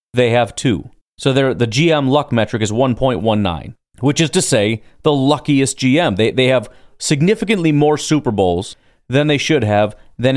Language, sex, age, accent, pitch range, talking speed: English, male, 30-49, American, 110-145 Hz, 170 wpm